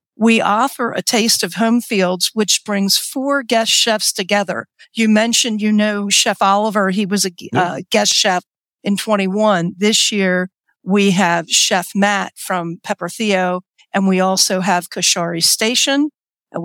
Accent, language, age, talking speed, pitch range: American, English, 50-69, 155 wpm, 190-230 Hz